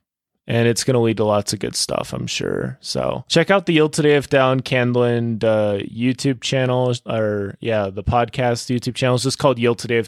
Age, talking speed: 20-39, 215 wpm